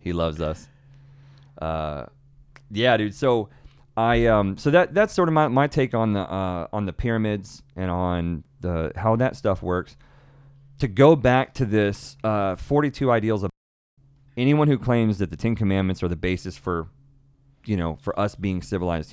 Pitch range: 90-135 Hz